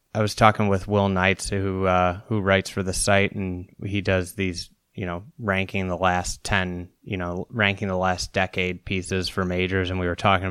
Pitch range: 90-100 Hz